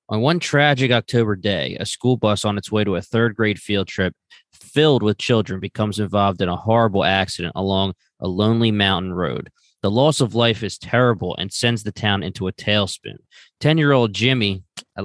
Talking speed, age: 185 wpm, 20-39